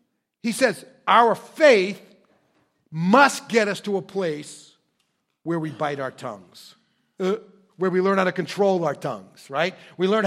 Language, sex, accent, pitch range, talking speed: English, male, American, 170-220 Hz, 160 wpm